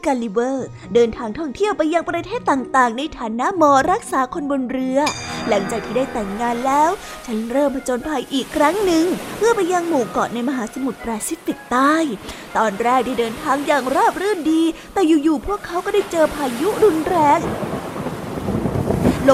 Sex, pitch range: female, 255-360 Hz